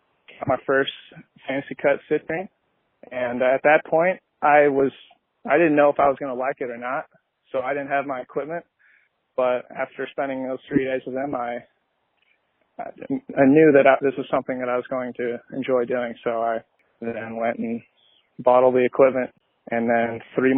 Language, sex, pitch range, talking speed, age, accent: English, male, 125-145 Hz, 185 wpm, 20-39, American